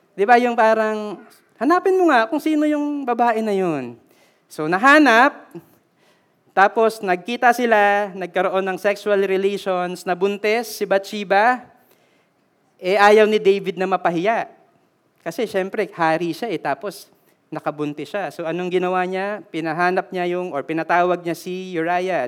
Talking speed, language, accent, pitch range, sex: 135 wpm, Filipino, native, 180-235 Hz, male